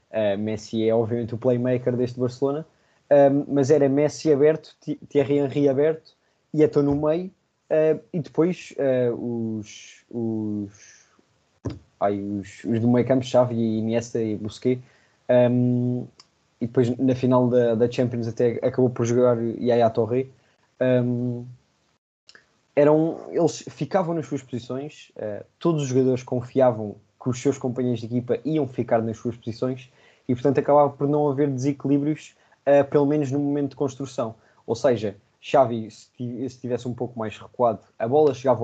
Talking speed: 150 wpm